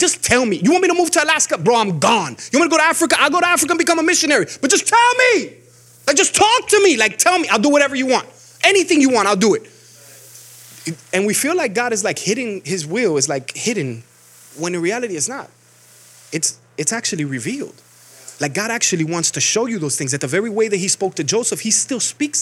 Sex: male